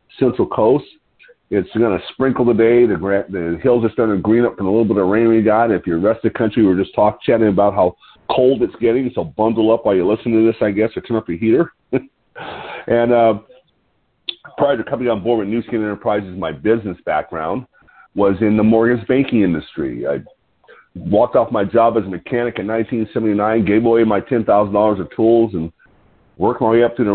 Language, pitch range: English, 100-115 Hz